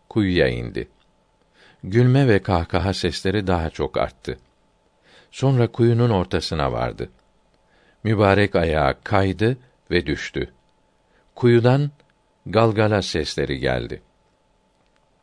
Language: Turkish